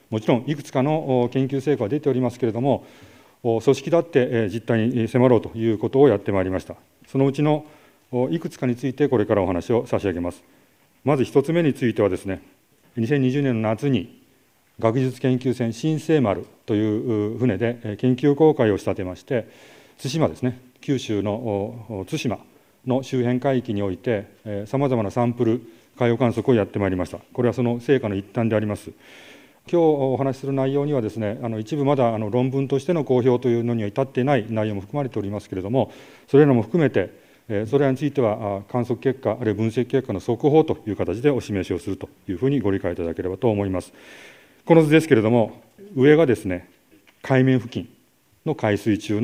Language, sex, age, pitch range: Japanese, male, 40-59, 105-135 Hz